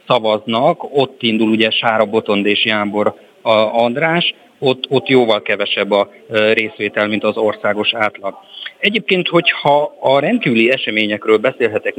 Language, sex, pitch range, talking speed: Hungarian, male, 105-130 Hz, 125 wpm